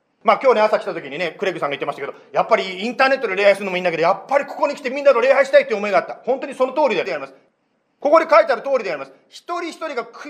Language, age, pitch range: Japanese, 40-59, 205-275 Hz